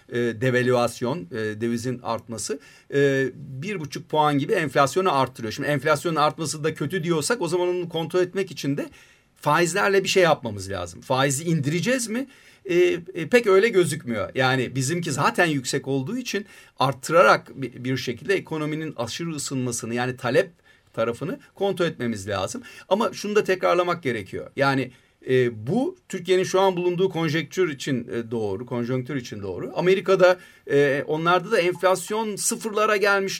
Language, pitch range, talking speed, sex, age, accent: Turkish, 130-190 Hz, 140 wpm, male, 40-59, native